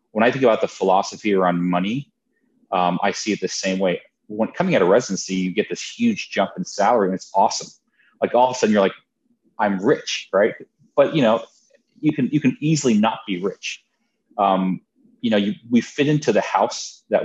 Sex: male